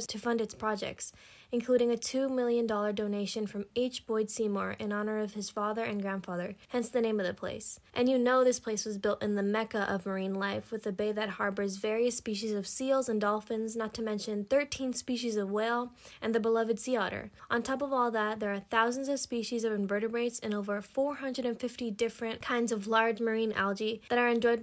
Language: English